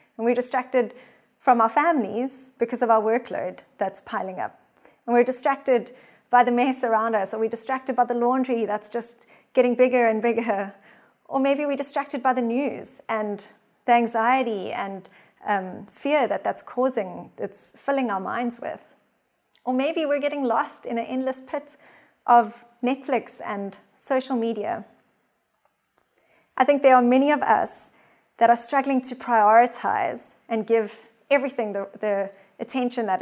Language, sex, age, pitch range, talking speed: English, female, 30-49, 225-275 Hz, 155 wpm